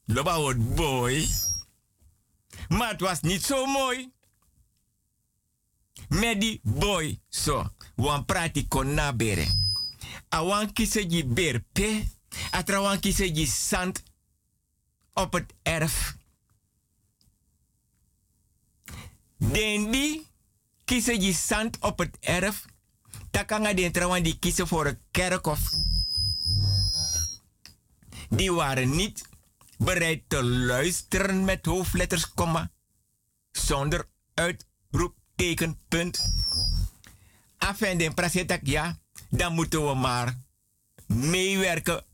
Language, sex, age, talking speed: Dutch, male, 60-79, 90 wpm